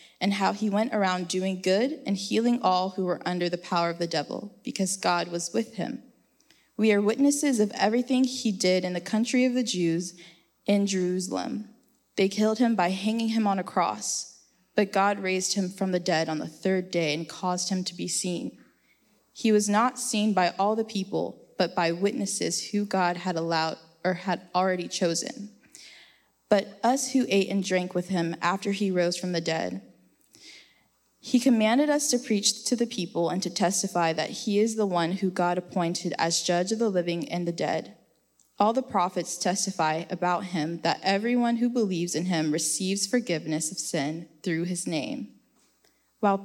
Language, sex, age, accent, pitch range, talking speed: English, female, 20-39, American, 175-220 Hz, 185 wpm